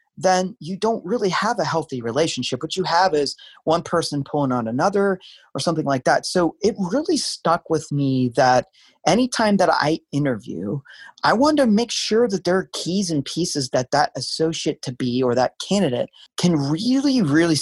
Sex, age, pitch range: male, 30-49, 140-190 Hz